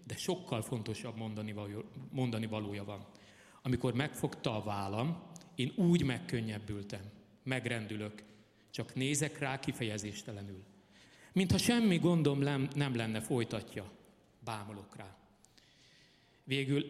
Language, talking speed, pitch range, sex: Hungarian, 95 wpm, 110-145 Hz, male